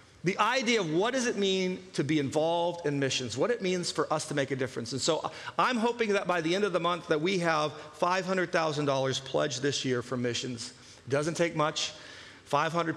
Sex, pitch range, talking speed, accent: male, 145-185 Hz, 215 wpm, American